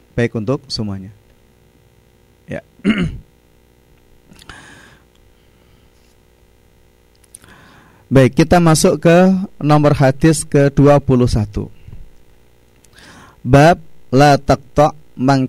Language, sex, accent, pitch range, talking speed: Indonesian, male, native, 95-150 Hz, 60 wpm